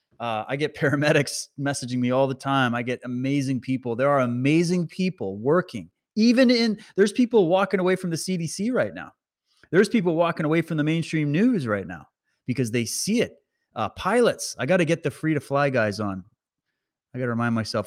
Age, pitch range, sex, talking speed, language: 30-49, 120-145 Hz, male, 195 wpm, English